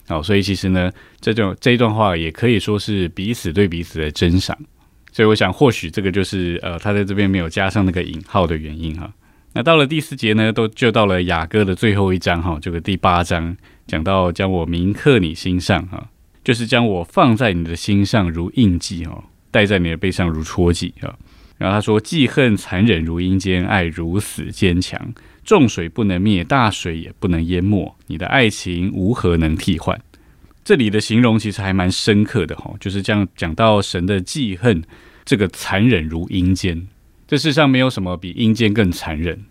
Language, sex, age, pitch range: Chinese, male, 20-39, 85-110 Hz